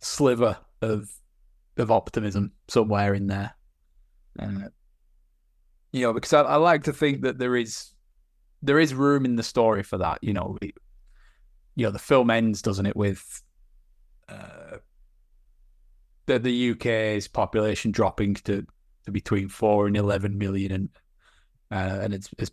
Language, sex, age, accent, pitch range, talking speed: English, male, 20-39, British, 95-120 Hz, 150 wpm